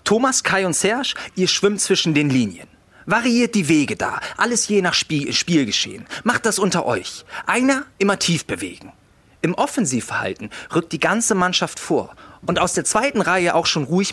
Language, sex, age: German, male, 40-59